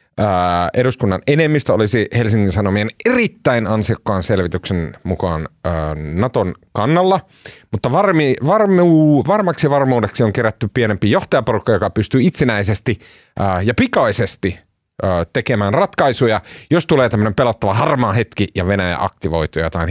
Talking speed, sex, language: 125 wpm, male, Finnish